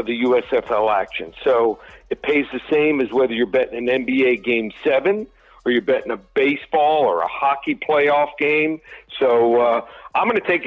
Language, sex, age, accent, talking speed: English, male, 60-79, American, 180 wpm